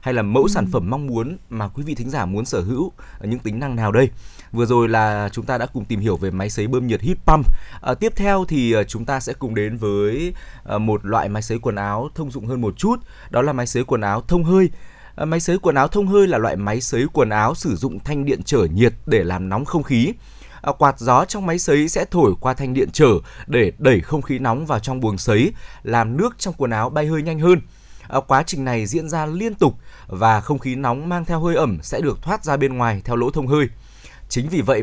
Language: Vietnamese